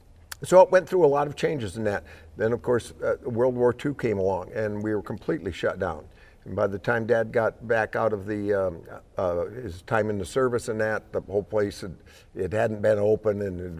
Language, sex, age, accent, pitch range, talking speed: English, male, 60-79, American, 95-120 Hz, 230 wpm